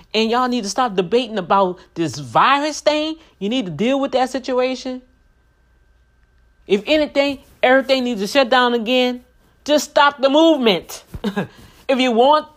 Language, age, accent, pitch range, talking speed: English, 40-59, American, 175-270 Hz, 155 wpm